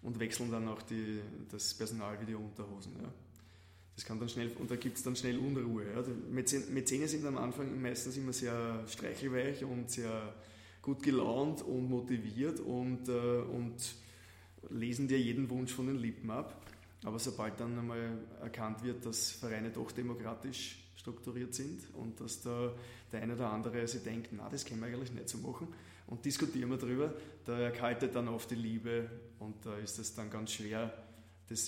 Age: 20-39